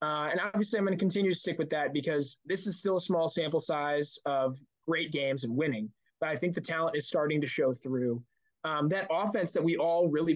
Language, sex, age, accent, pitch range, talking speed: English, male, 20-39, American, 145-185 Hz, 235 wpm